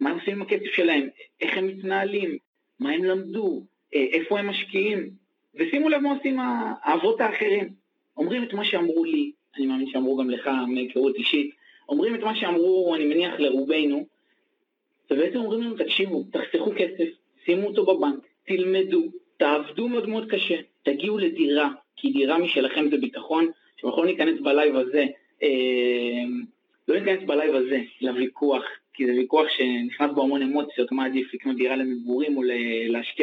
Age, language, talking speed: 30-49, Hebrew, 155 wpm